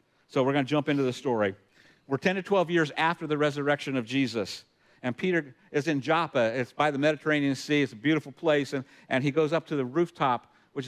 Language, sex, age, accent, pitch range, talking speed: English, male, 50-69, American, 125-155 Hz, 225 wpm